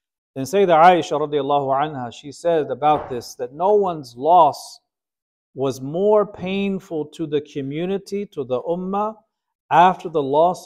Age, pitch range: 50-69, 130-170 Hz